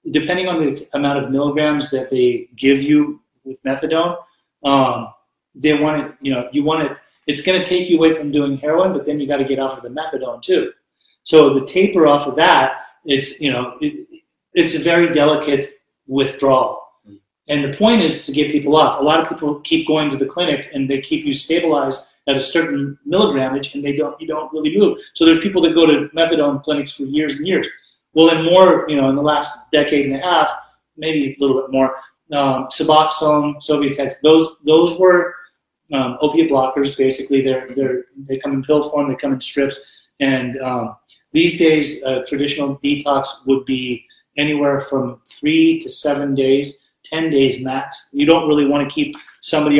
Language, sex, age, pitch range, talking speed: English, male, 30-49, 135-160 Hz, 200 wpm